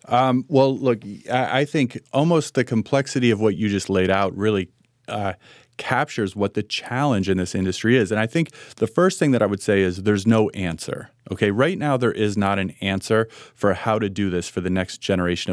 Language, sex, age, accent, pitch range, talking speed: English, male, 30-49, American, 95-125 Hz, 215 wpm